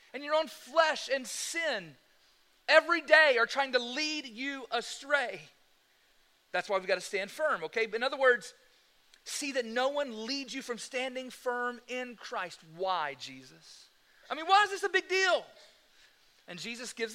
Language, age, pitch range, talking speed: English, 40-59, 195-270 Hz, 170 wpm